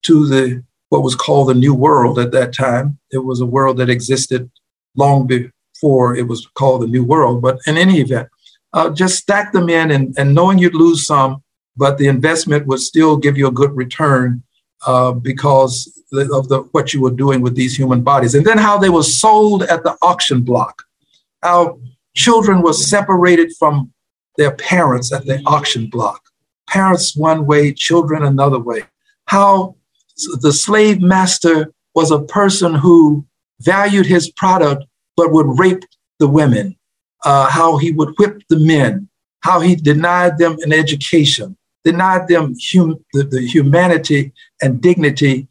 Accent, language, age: American, English, 50-69